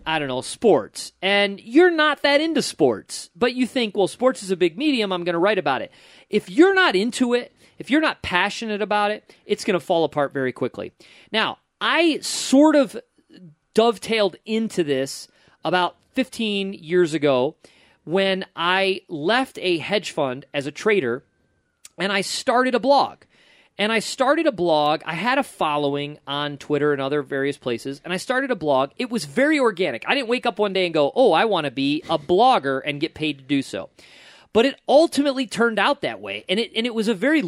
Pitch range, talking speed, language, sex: 150-240 Hz, 205 wpm, English, male